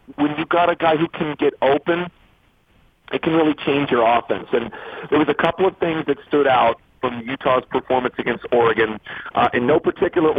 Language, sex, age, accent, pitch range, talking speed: English, male, 40-59, American, 145-185 Hz, 195 wpm